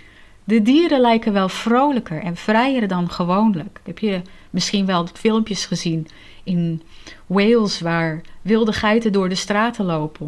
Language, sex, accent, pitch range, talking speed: Dutch, female, Dutch, 165-230 Hz, 140 wpm